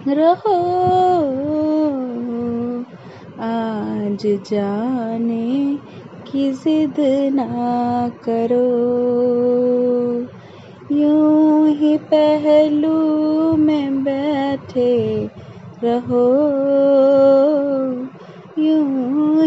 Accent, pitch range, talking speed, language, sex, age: native, 245-365 Hz, 35 wpm, Hindi, female, 20-39